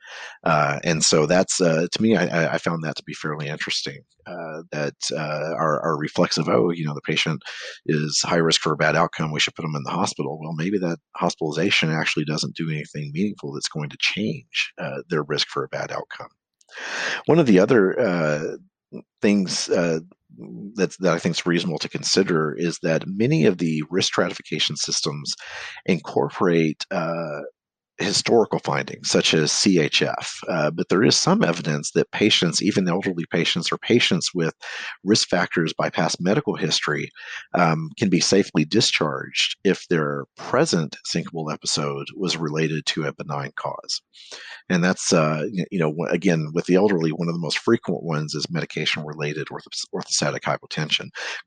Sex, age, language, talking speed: male, 40-59, English, 175 wpm